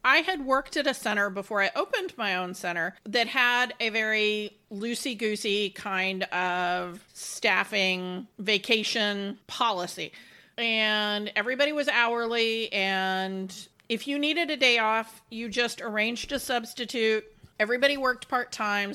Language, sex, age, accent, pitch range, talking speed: English, female, 40-59, American, 205-255 Hz, 130 wpm